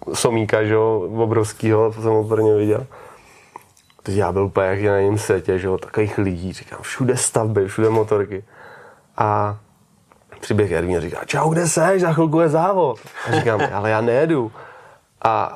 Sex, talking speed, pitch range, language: male, 145 wpm, 110-140 Hz, Czech